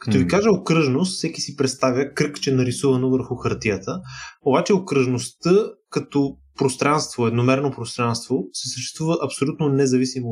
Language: Bulgarian